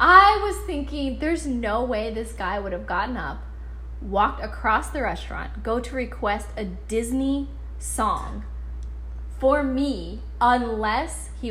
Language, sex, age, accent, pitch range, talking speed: English, female, 10-29, American, 195-265 Hz, 135 wpm